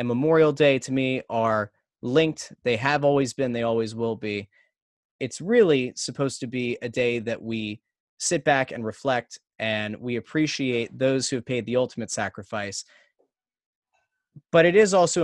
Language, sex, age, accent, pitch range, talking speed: English, male, 20-39, American, 115-145 Hz, 165 wpm